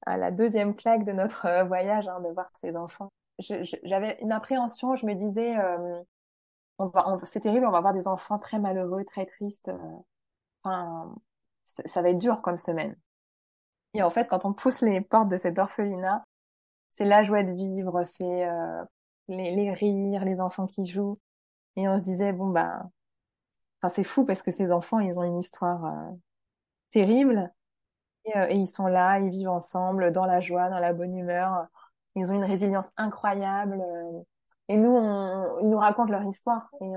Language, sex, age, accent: French, female, 20-39, French